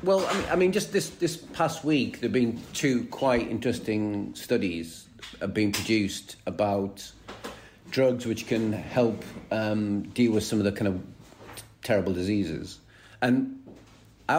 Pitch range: 100-125 Hz